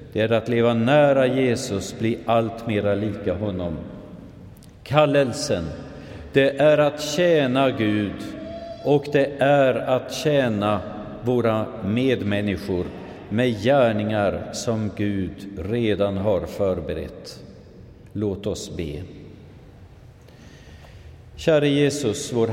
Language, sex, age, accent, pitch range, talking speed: Swedish, male, 50-69, native, 95-130 Hz, 100 wpm